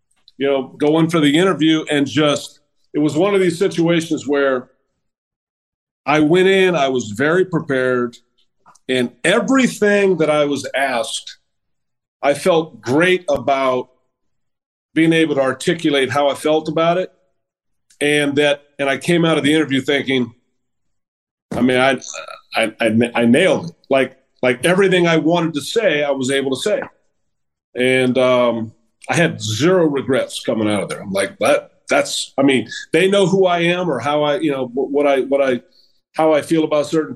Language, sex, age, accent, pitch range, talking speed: English, male, 40-59, American, 125-155 Hz, 170 wpm